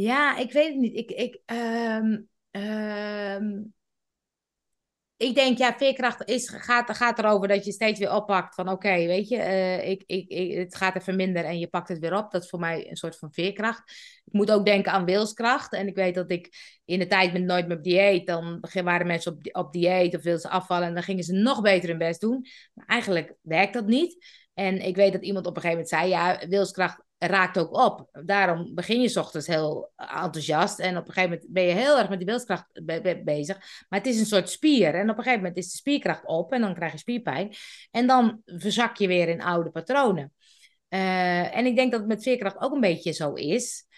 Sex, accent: female, Dutch